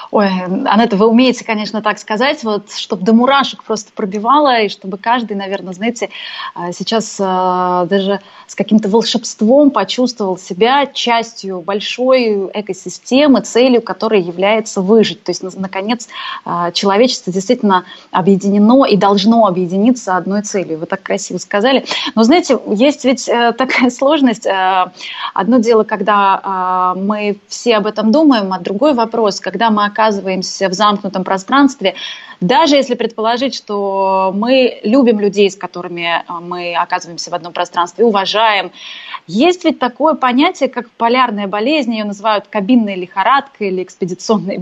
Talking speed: 135 wpm